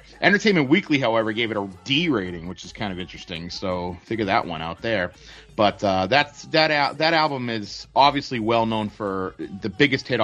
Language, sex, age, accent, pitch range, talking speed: English, male, 30-49, American, 105-135 Hz, 195 wpm